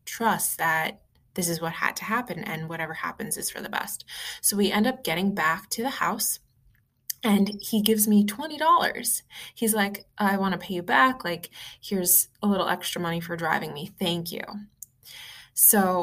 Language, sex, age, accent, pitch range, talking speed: English, female, 20-39, American, 165-210 Hz, 185 wpm